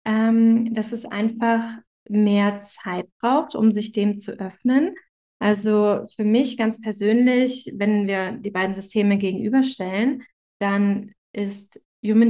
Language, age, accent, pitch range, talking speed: German, 20-39, German, 200-230 Hz, 125 wpm